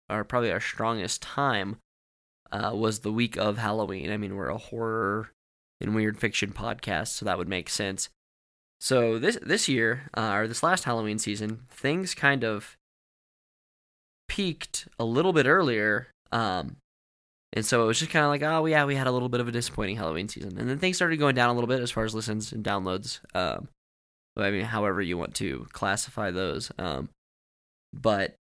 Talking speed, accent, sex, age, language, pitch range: 190 wpm, American, male, 10-29, English, 100-125 Hz